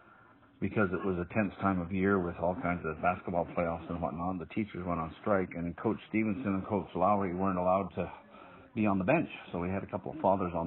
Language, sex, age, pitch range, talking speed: English, male, 50-69, 90-100 Hz, 235 wpm